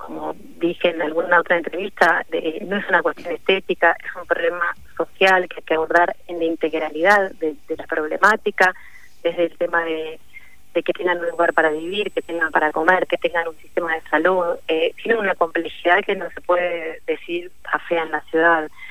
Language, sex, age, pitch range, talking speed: Spanish, female, 30-49, 170-230 Hz, 195 wpm